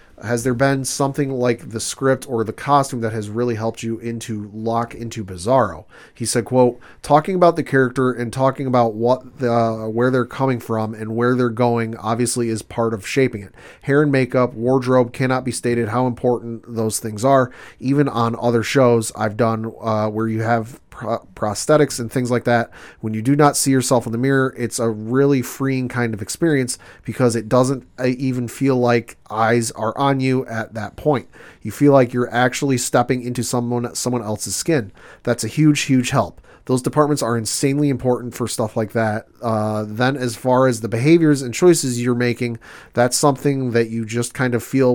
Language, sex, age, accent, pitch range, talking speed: English, male, 30-49, American, 115-130 Hz, 195 wpm